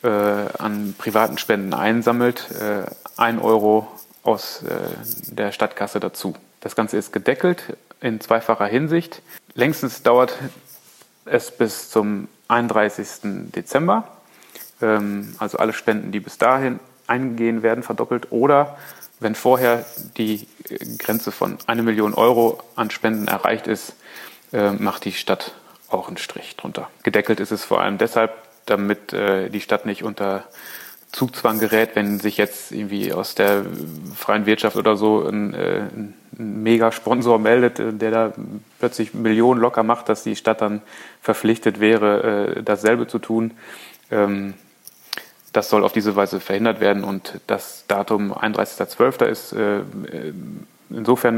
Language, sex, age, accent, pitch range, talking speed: German, male, 30-49, German, 105-115 Hz, 135 wpm